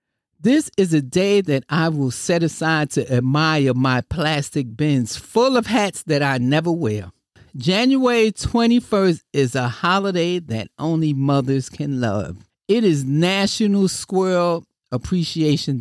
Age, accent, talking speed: 50-69, American, 135 wpm